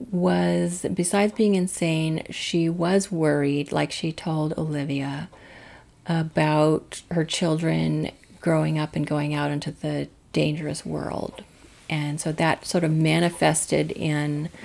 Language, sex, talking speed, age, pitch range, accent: English, female, 125 wpm, 40-59, 150-170 Hz, American